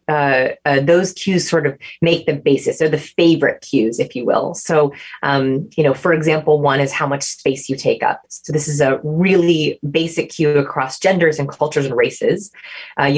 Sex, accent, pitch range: female, American, 140-175 Hz